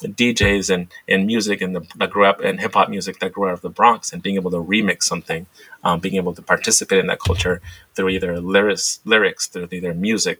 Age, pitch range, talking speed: 30-49, 95-150 Hz, 230 wpm